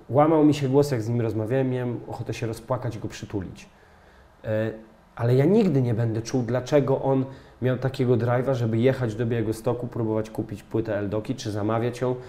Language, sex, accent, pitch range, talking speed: Polish, male, native, 110-135 Hz, 180 wpm